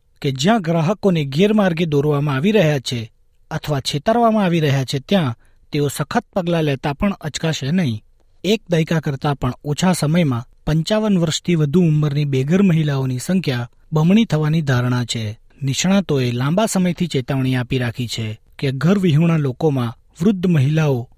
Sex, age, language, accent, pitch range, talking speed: male, 40-59, Gujarati, native, 130-175 Hz, 140 wpm